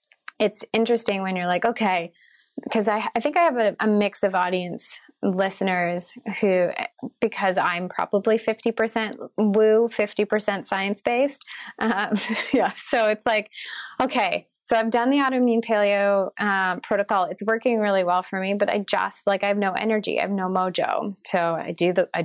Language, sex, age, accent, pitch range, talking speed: English, female, 20-39, American, 180-220 Hz, 170 wpm